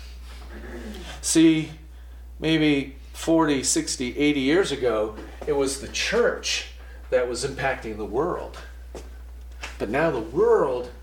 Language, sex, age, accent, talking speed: English, male, 40-59, American, 110 wpm